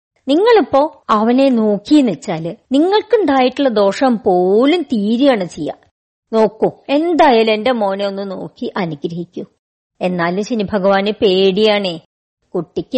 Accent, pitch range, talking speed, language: native, 205-300 Hz, 95 wpm, Malayalam